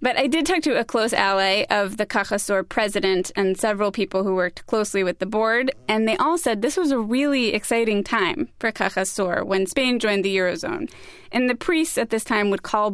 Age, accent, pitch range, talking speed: 20-39, American, 200-255 Hz, 215 wpm